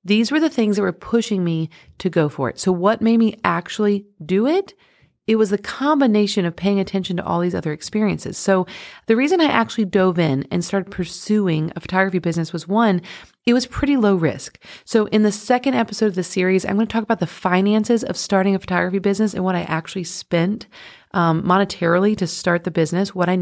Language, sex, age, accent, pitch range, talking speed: English, female, 30-49, American, 175-220 Hz, 215 wpm